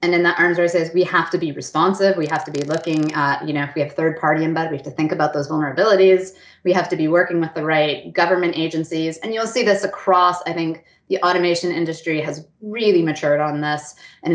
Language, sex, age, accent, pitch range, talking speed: English, female, 20-39, American, 160-200 Hz, 245 wpm